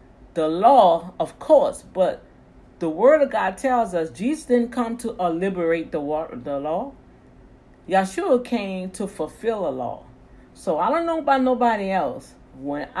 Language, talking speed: English, 150 wpm